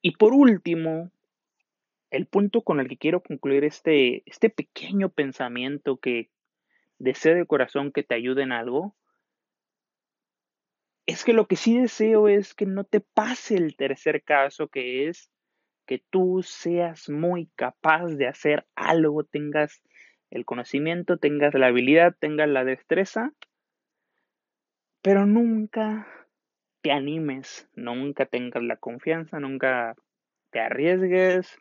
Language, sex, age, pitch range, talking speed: Spanish, male, 30-49, 135-185 Hz, 125 wpm